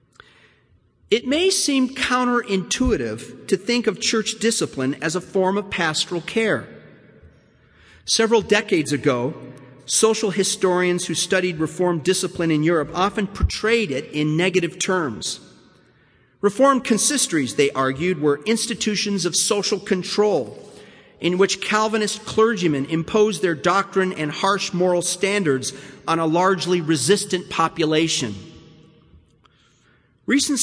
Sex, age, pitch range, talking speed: male, 40-59, 170-215 Hz, 115 wpm